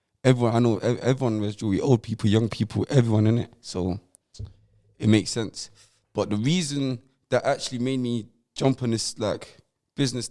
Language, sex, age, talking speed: English, male, 20-39, 155 wpm